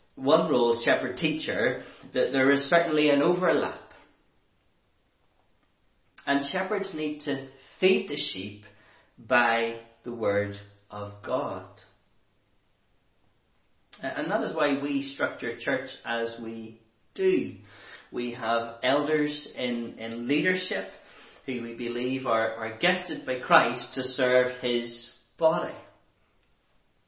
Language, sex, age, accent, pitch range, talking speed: English, male, 30-49, Irish, 115-150 Hz, 110 wpm